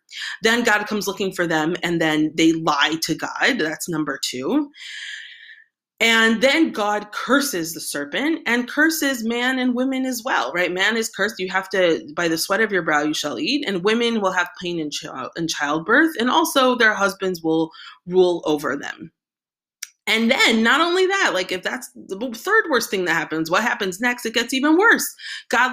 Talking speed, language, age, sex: 190 wpm, English, 30-49, female